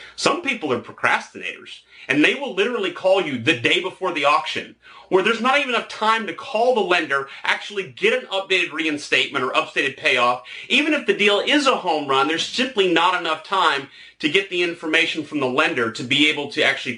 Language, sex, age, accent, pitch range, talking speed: English, male, 30-49, American, 135-185 Hz, 205 wpm